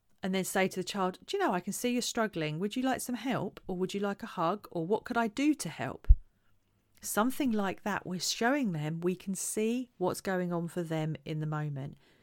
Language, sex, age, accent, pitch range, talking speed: English, female, 40-59, British, 155-205 Hz, 240 wpm